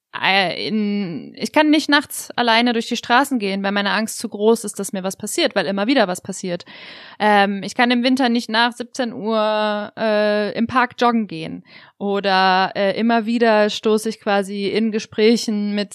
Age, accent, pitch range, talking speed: 20-39, German, 195-230 Hz, 180 wpm